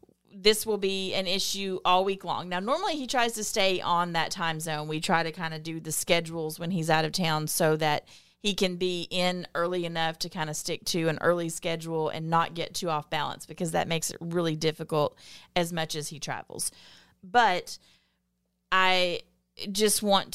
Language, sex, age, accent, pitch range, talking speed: English, female, 30-49, American, 160-195 Hz, 200 wpm